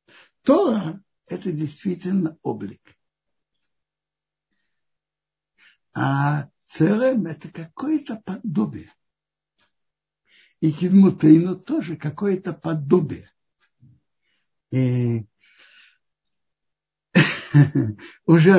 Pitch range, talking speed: 140-190 Hz, 55 wpm